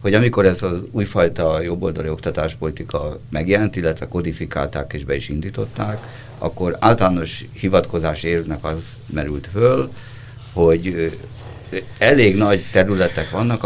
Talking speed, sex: 115 wpm, male